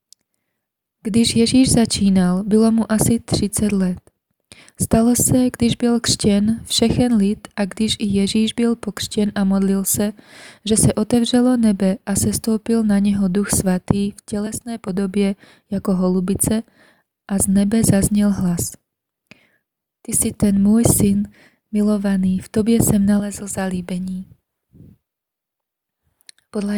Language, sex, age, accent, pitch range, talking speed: Czech, female, 20-39, native, 195-220 Hz, 130 wpm